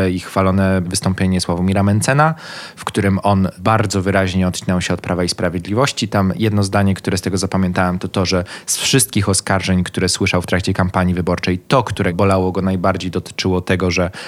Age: 20-39